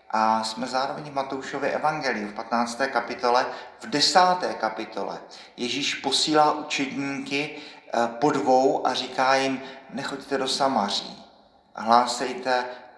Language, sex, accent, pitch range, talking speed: Czech, male, native, 120-135 Hz, 110 wpm